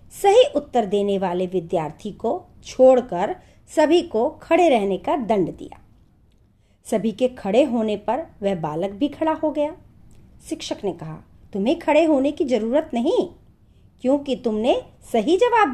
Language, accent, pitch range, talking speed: Hindi, native, 165-275 Hz, 145 wpm